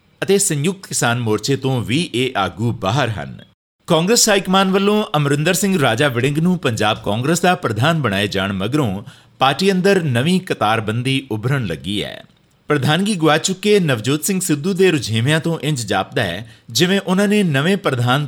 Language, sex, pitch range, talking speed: Punjabi, male, 110-165 Hz, 165 wpm